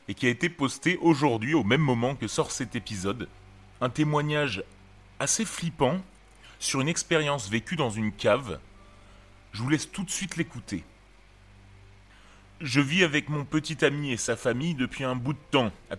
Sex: male